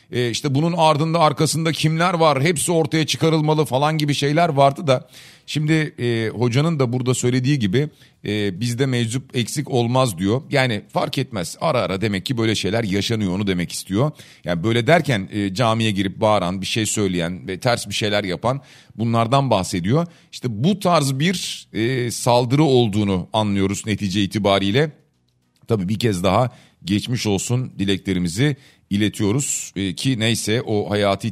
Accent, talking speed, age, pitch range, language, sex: native, 155 wpm, 40-59, 110-155 Hz, Turkish, male